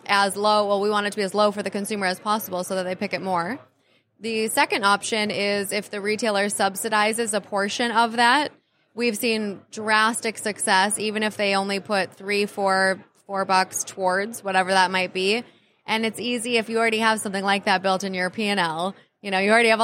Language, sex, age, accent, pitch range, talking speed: English, female, 20-39, American, 185-215 Hz, 210 wpm